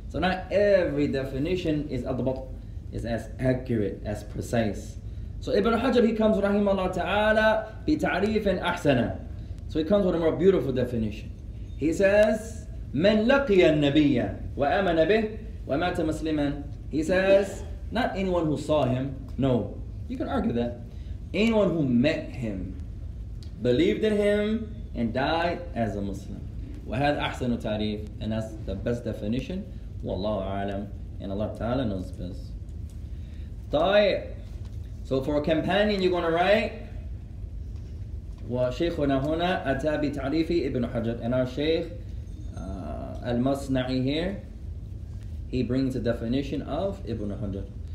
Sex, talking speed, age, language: male, 130 wpm, 20-39, English